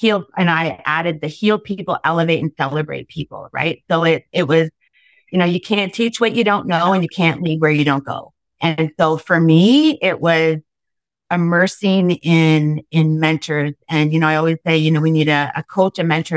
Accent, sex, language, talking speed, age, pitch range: American, female, English, 215 wpm, 30-49, 150-180 Hz